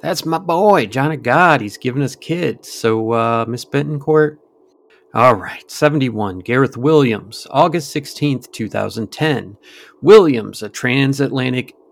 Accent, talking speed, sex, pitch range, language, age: American, 130 wpm, male, 110-150 Hz, English, 30-49